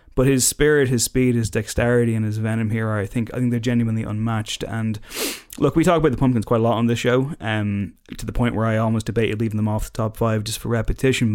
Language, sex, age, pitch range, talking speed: English, male, 20-39, 110-125 Hz, 260 wpm